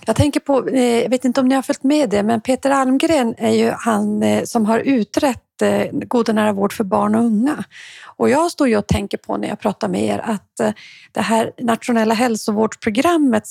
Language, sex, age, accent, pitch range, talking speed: Swedish, female, 40-59, native, 210-255 Hz, 200 wpm